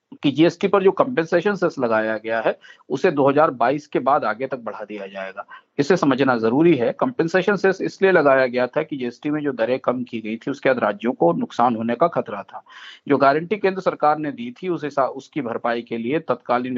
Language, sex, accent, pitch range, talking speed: Hindi, male, native, 125-180 Hz, 170 wpm